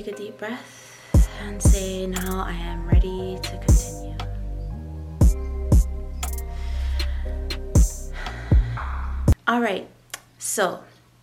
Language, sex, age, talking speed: English, female, 20-39, 75 wpm